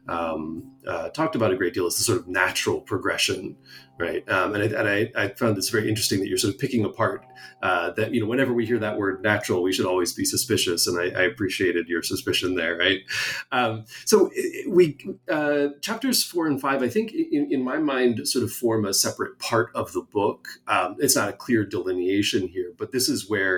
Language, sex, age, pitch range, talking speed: English, male, 30-49, 100-145 Hz, 220 wpm